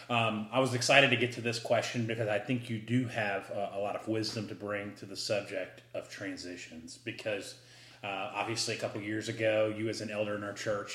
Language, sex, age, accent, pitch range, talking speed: English, male, 30-49, American, 110-130 Hz, 225 wpm